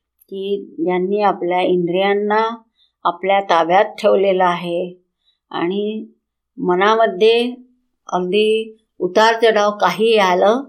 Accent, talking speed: native, 80 wpm